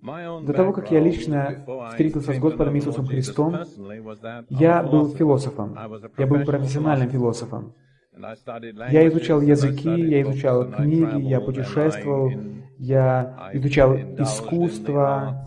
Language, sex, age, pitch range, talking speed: Russian, male, 20-39, 130-150 Hz, 110 wpm